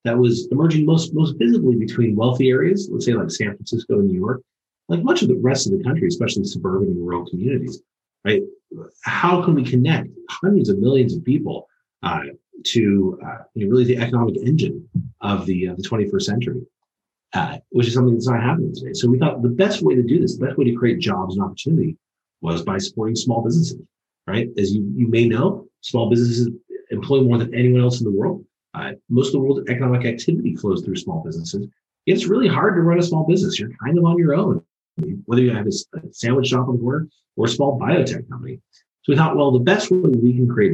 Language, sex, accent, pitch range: English, male, American, 115-175 Hz